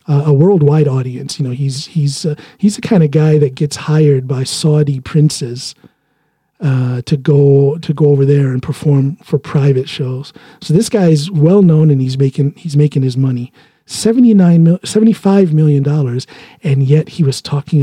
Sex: male